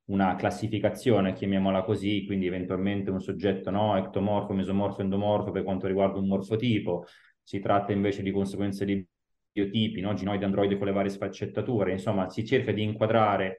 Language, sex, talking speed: Italian, male, 160 wpm